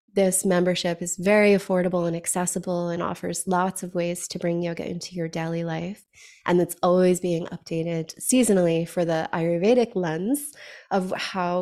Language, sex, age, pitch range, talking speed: English, female, 20-39, 175-210 Hz, 160 wpm